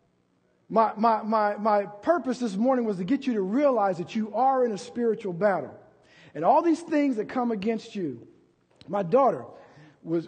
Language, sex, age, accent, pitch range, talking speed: English, male, 50-69, American, 175-230 Hz, 180 wpm